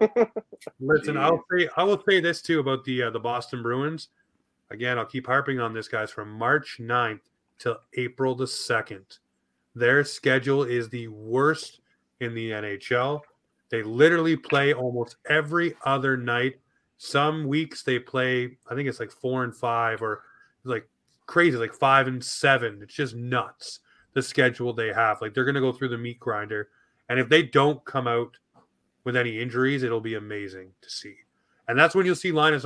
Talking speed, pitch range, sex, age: 175 wpm, 120-150 Hz, male, 30-49